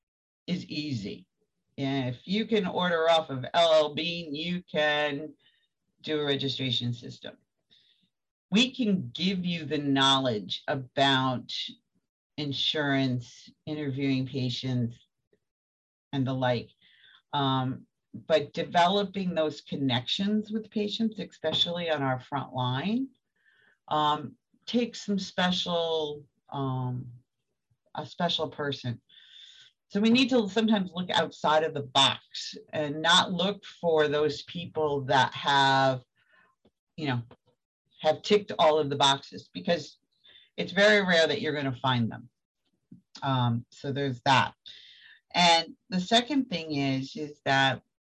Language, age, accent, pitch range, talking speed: English, 50-69, American, 135-190 Hz, 120 wpm